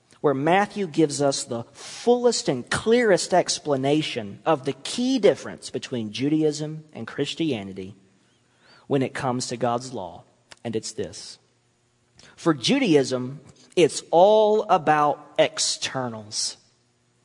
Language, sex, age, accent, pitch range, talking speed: English, male, 40-59, American, 130-185 Hz, 110 wpm